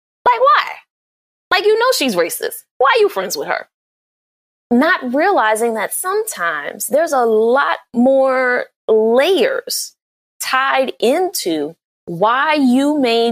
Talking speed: 120 wpm